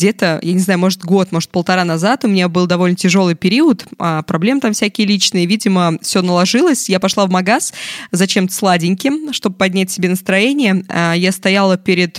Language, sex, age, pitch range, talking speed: Russian, female, 20-39, 180-210 Hz, 175 wpm